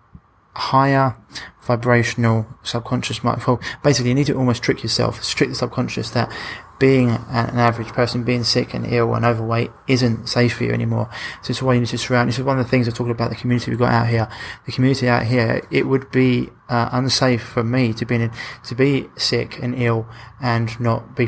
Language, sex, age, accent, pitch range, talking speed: English, male, 20-39, British, 115-125 Hz, 225 wpm